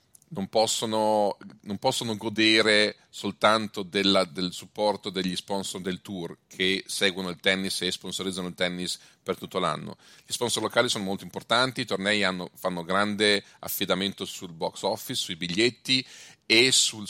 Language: Italian